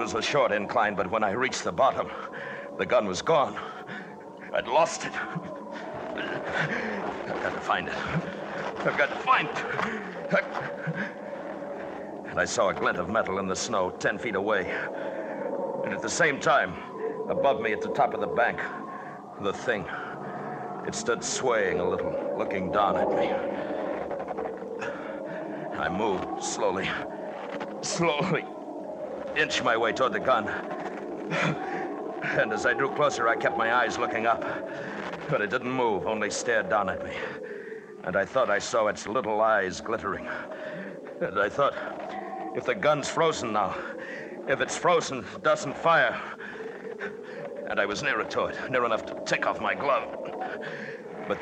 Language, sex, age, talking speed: English, male, 60-79, 155 wpm